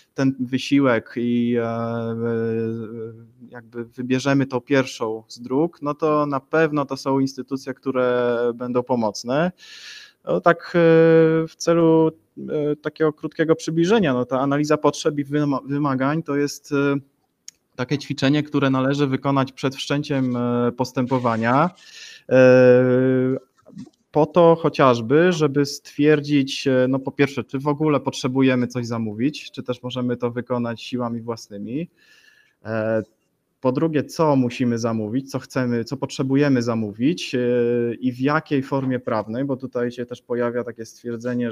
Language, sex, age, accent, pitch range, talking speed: Polish, male, 20-39, native, 120-145 Hz, 125 wpm